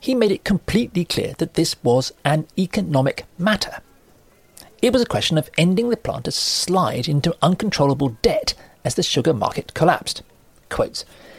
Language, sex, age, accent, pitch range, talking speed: English, male, 40-59, British, 125-205 Hz, 155 wpm